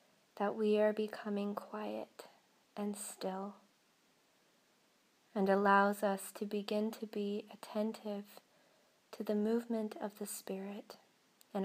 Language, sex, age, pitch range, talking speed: English, female, 20-39, 200-220 Hz, 115 wpm